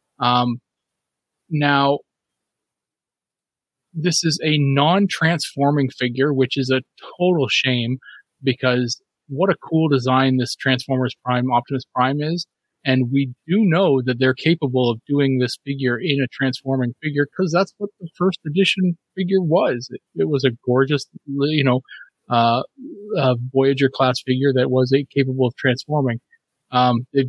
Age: 30-49